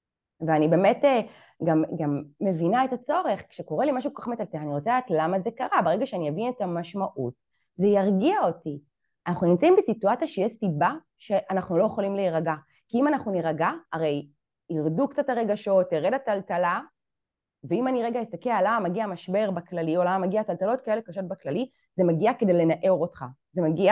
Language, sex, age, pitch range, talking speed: Hebrew, female, 30-49, 165-255 Hz, 170 wpm